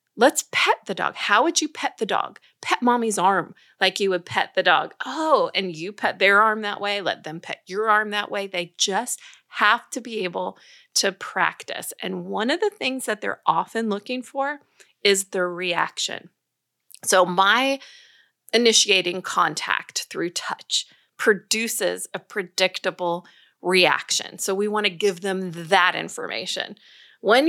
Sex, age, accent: female, 30-49, American